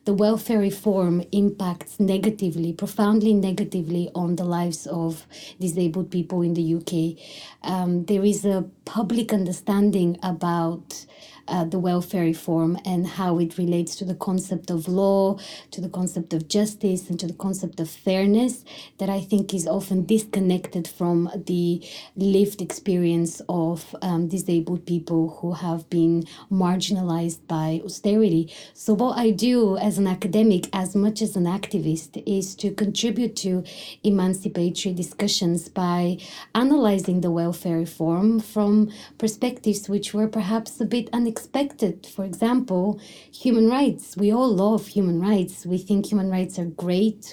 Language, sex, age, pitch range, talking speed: English, female, 20-39, 175-210 Hz, 145 wpm